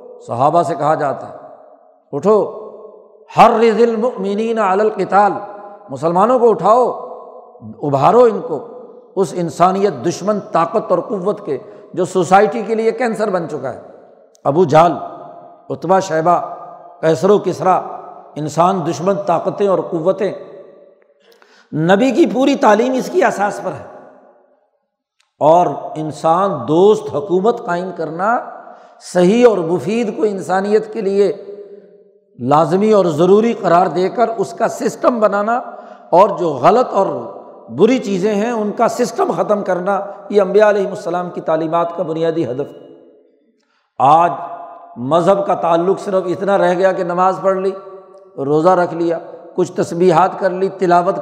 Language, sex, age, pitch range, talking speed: Urdu, male, 60-79, 175-210 Hz, 135 wpm